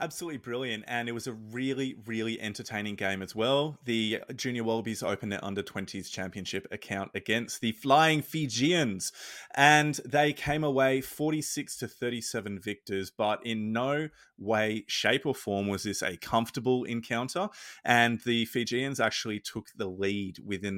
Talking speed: 145 wpm